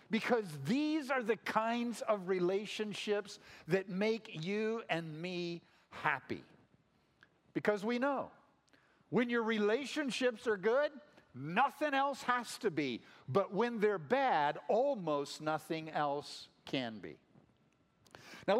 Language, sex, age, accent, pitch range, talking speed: English, male, 50-69, American, 190-255 Hz, 115 wpm